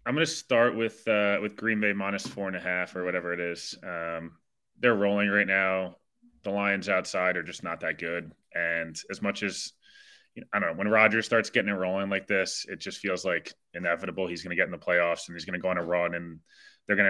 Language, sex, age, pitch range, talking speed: English, male, 20-39, 90-105 Hz, 250 wpm